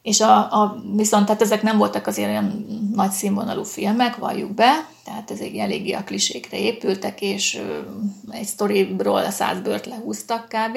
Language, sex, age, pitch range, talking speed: Hungarian, female, 30-49, 200-220 Hz, 160 wpm